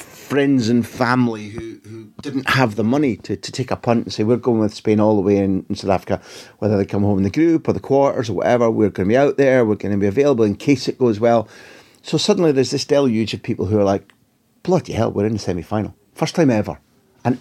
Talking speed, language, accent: 260 wpm, English, British